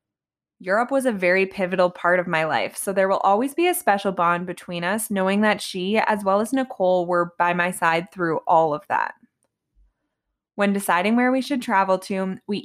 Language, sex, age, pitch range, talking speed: English, female, 20-39, 180-235 Hz, 200 wpm